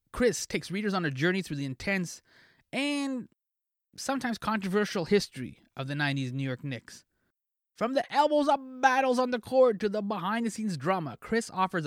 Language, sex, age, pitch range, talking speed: English, male, 20-39, 140-220 Hz, 165 wpm